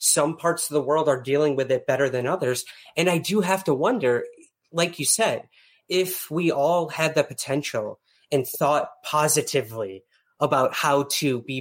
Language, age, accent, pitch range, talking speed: English, 30-49, American, 130-165 Hz, 175 wpm